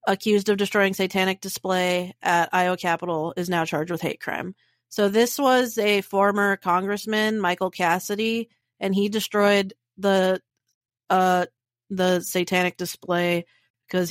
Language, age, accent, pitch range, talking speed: English, 30-49, American, 180-215 Hz, 130 wpm